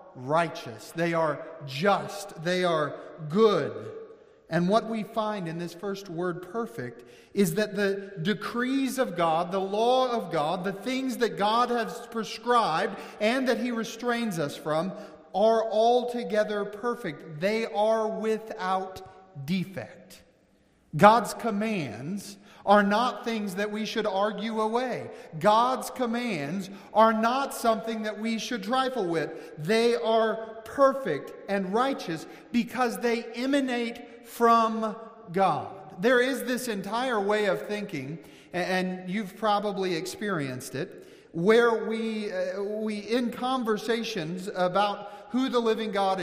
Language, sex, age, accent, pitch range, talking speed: English, male, 40-59, American, 190-235 Hz, 125 wpm